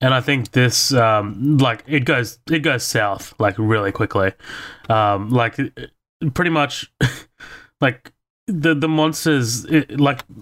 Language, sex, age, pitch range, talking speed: English, male, 20-39, 115-140 Hz, 135 wpm